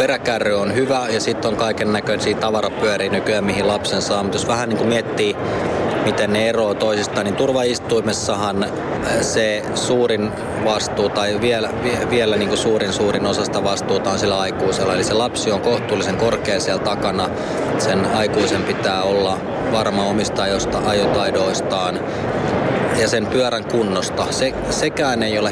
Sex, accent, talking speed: male, native, 145 wpm